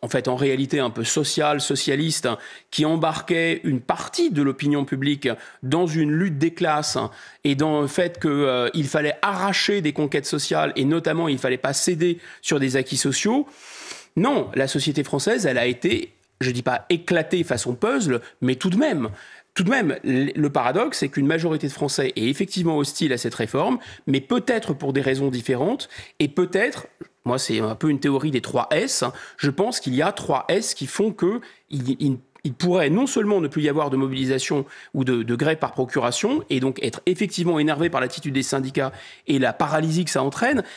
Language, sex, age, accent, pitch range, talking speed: French, male, 30-49, French, 135-175 Hz, 200 wpm